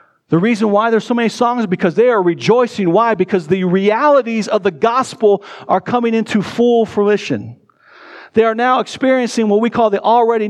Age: 50-69